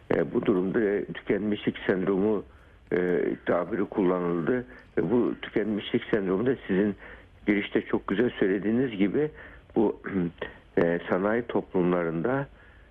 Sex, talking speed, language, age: male, 90 wpm, Turkish, 60-79